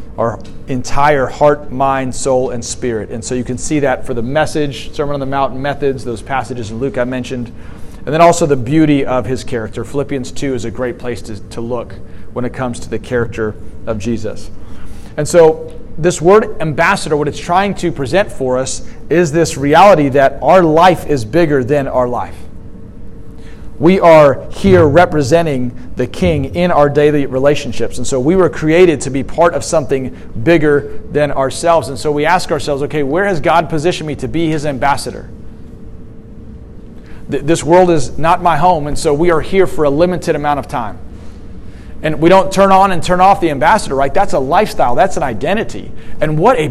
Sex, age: male, 40-59